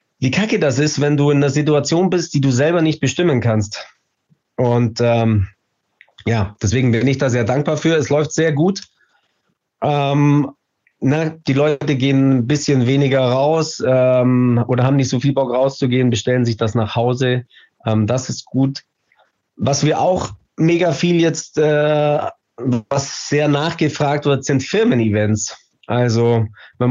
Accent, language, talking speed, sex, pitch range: German, German, 155 wpm, male, 120-150 Hz